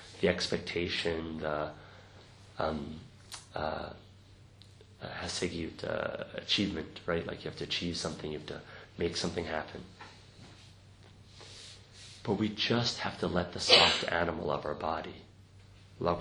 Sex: male